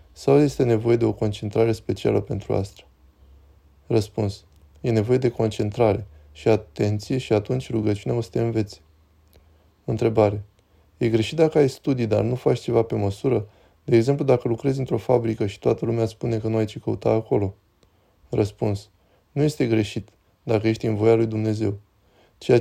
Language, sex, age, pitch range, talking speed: Romanian, male, 20-39, 100-120 Hz, 165 wpm